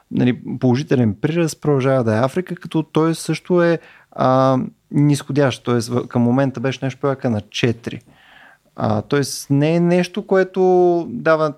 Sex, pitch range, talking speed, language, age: male, 125-170 Hz, 130 wpm, Bulgarian, 30-49